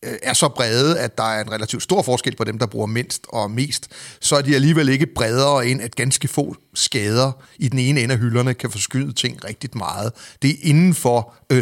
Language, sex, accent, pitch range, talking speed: Danish, male, native, 115-140 Hz, 225 wpm